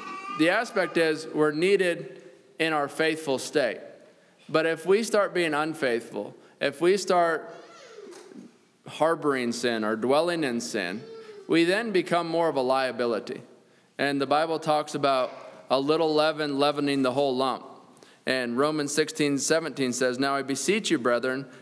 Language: English